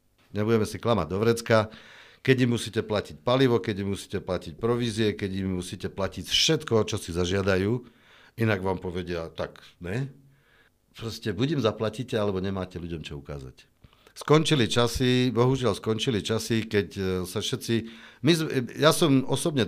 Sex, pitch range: male, 90-115 Hz